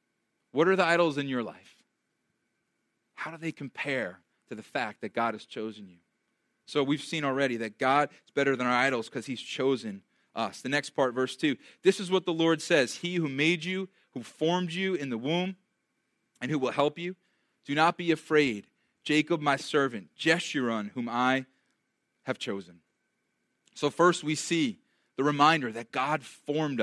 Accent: American